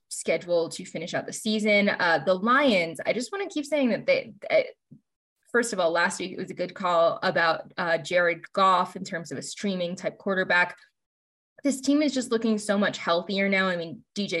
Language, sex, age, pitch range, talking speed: English, female, 20-39, 175-220 Hz, 215 wpm